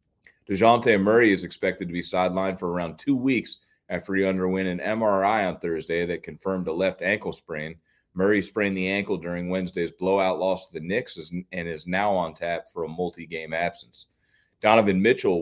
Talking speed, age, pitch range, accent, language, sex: 180 wpm, 30-49, 90-110 Hz, American, English, male